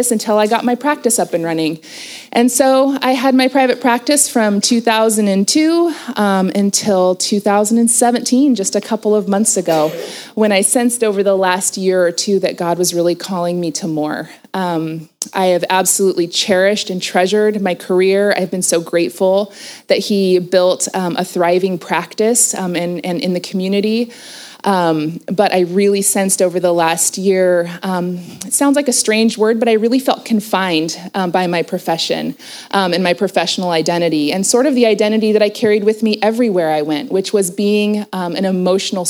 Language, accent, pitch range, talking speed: English, American, 175-215 Hz, 180 wpm